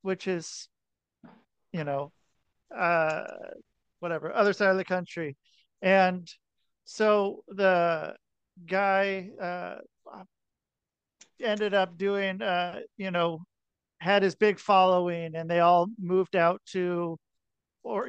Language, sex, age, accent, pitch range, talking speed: English, male, 40-59, American, 170-210 Hz, 110 wpm